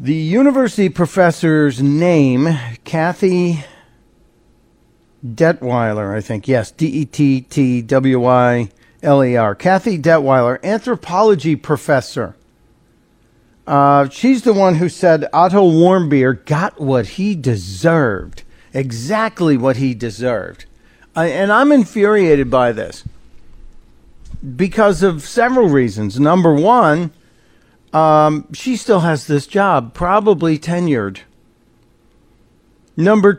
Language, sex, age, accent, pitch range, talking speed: English, male, 50-69, American, 135-185 Hz, 90 wpm